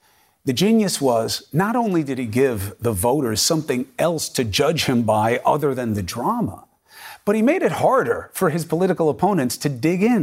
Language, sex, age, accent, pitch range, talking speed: English, male, 40-59, American, 120-200 Hz, 190 wpm